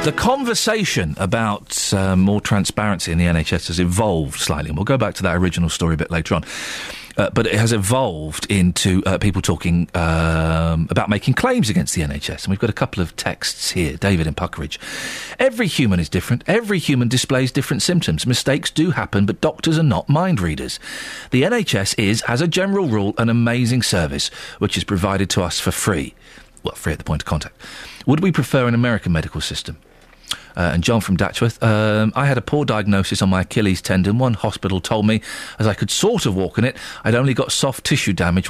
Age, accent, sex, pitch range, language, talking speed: 40-59, British, male, 95-130 Hz, English, 205 wpm